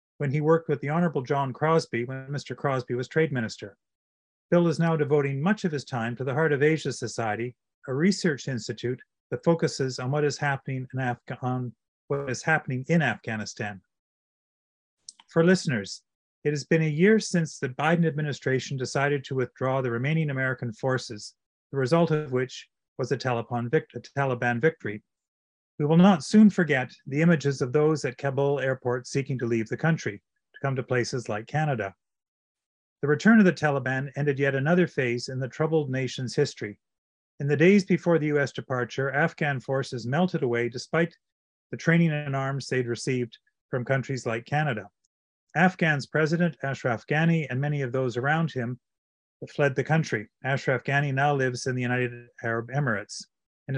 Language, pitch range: English, 125-155 Hz